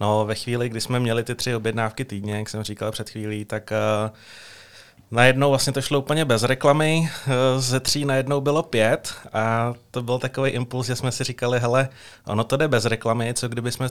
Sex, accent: male, native